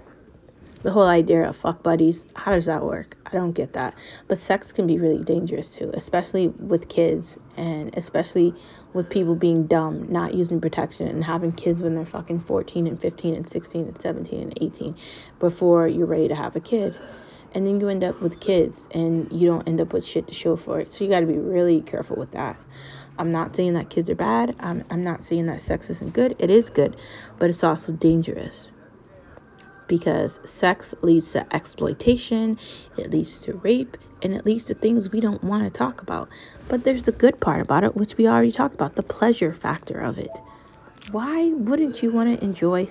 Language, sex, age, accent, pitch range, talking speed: English, female, 20-39, American, 165-220 Hz, 205 wpm